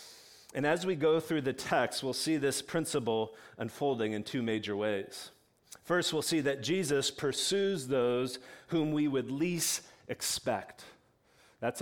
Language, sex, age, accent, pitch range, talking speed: English, male, 40-59, American, 120-165 Hz, 145 wpm